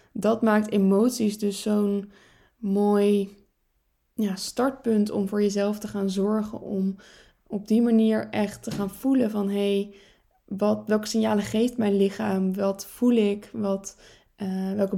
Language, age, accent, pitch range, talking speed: Dutch, 20-39, Dutch, 200-225 Hz, 145 wpm